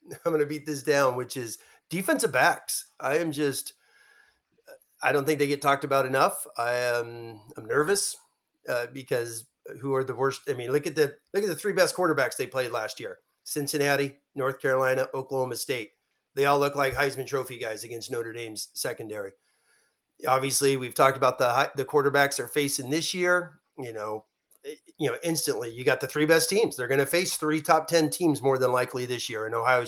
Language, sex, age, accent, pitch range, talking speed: English, male, 30-49, American, 125-160 Hz, 200 wpm